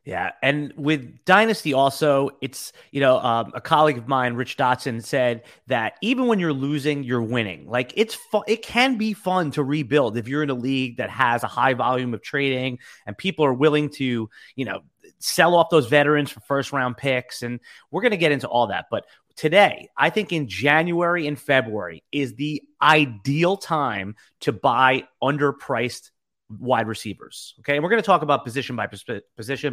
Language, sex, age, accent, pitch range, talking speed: English, male, 30-49, American, 125-165 Hz, 190 wpm